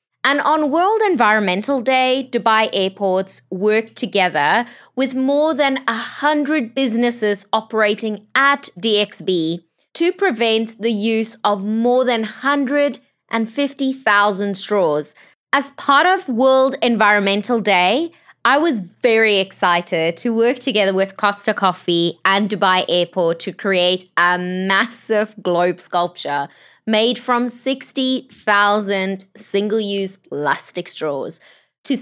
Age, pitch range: 20-39, 195-260 Hz